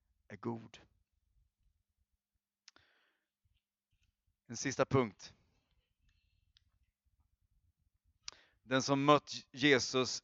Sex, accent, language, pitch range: male, native, Swedish, 95-125 Hz